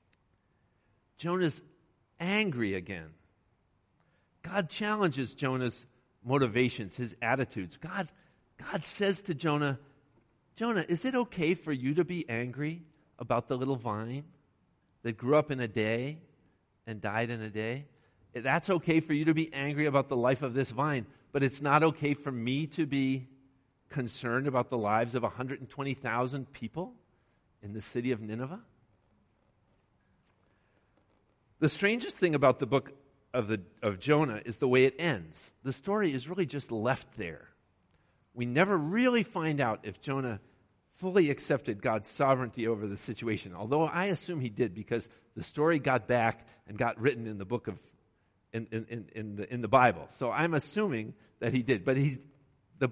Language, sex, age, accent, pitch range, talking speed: English, male, 50-69, American, 110-150 Hz, 160 wpm